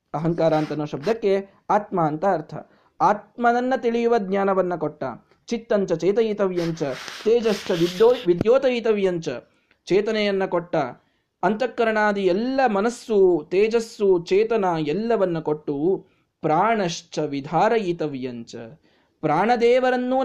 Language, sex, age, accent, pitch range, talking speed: Kannada, male, 20-39, native, 165-225 Hz, 80 wpm